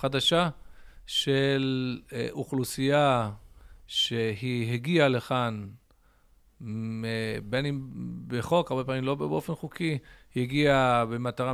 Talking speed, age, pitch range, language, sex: 90 wpm, 50-69, 115-150 Hz, Hebrew, male